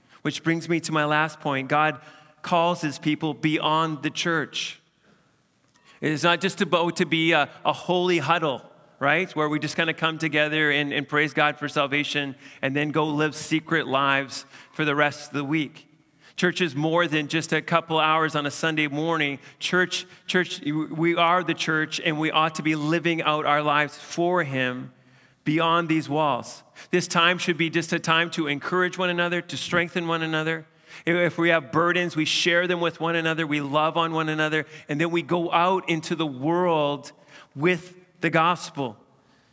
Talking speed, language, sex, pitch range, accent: 190 wpm, English, male, 150-170 Hz, American